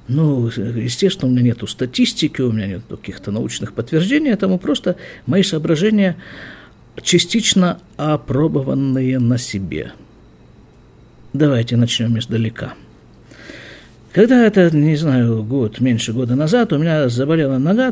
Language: Russian